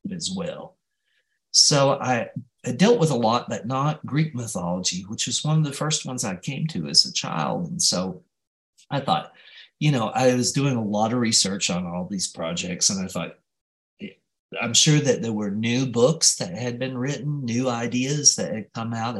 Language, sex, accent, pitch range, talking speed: English, male, American, 110-180 Hz, 195 wpm